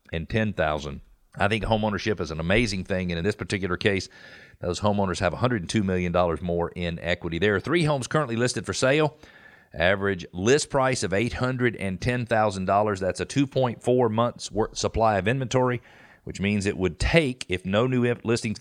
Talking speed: 170 wpm